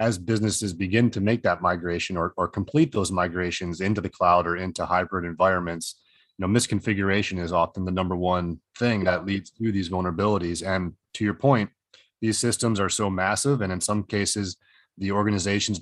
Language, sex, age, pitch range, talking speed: English, male, 30-49, 90-110 Hz, 180 wpm